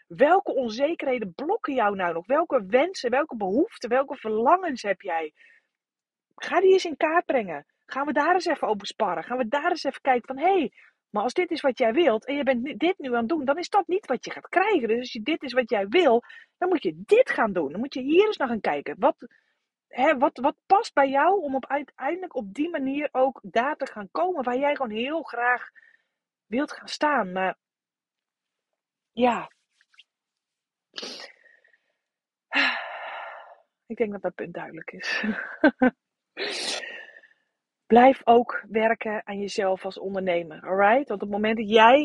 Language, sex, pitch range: Dutch, female, 200-285 Hz